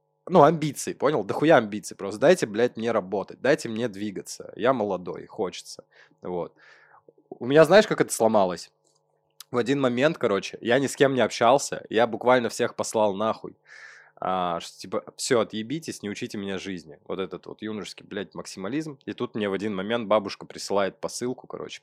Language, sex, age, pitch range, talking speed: Russian, male, 20-39, 95-125 Hz, 175 wpm